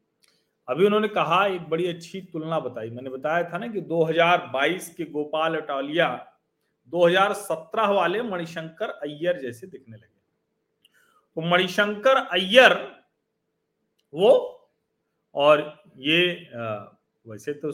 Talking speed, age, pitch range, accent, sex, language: 110 wpm, 40-59, 150-215 Hz, native, male, Hindi